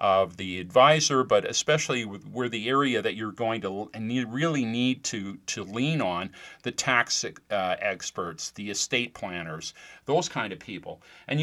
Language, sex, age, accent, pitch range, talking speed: English, male, 40-59, American, 100-130 Hz, 175 wpm